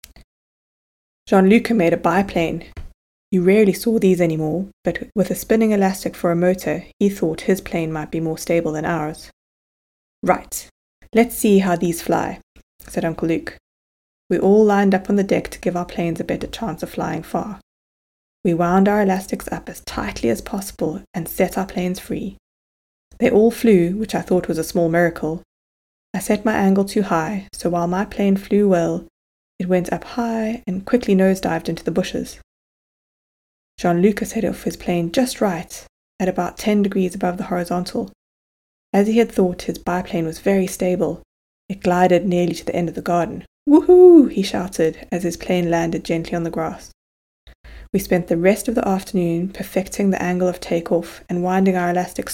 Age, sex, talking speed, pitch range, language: 20-39, female, 180 wpm, 170-200 Hz, English